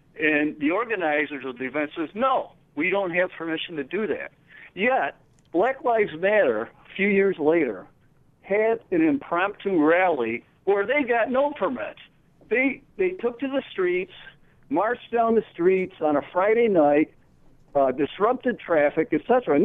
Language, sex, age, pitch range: English, male, 60-79, 150-230 Hz